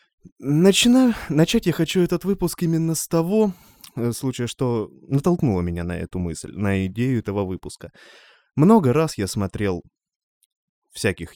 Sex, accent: male, native